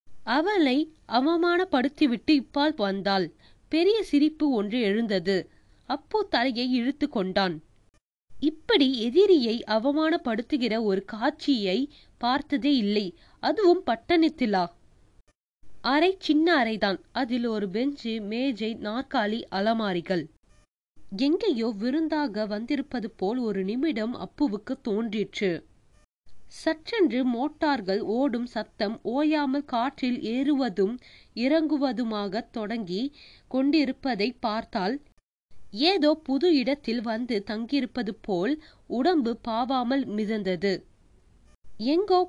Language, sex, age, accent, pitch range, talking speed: Tamil, female, 20-39, native, 210-290 Hz, 85 wpm